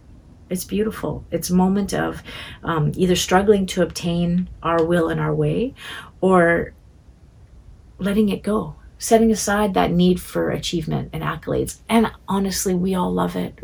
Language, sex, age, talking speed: English, female, 40-59, 150 wpm